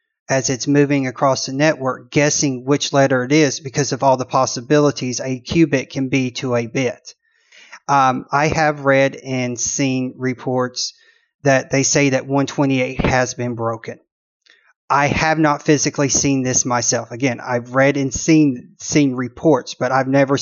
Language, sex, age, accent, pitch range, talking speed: English, male, 30-49, American, 130-155 Hz, 160 wpm